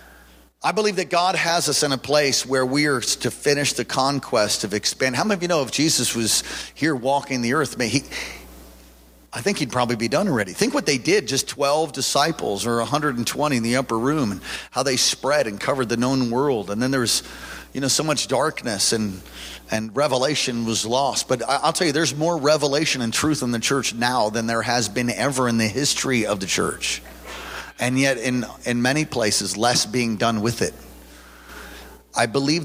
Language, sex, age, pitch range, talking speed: English, male, 40-59, 110-135 Hz, 205 wpm